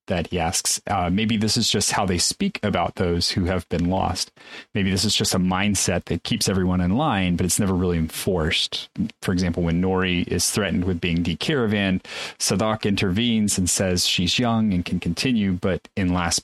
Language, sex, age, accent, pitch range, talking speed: English, male, 30-49, American, 90-100 Hz, 200 wpm